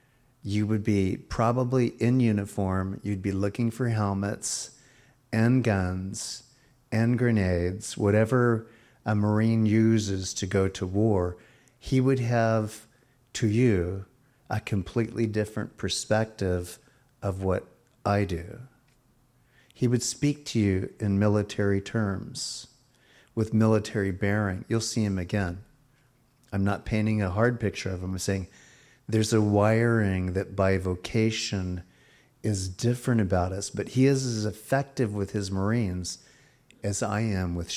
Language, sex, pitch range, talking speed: English, male, 95-120 Hz, 130 wpm